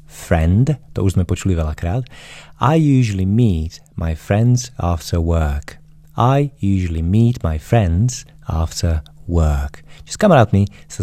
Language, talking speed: Slovak, 130 wpm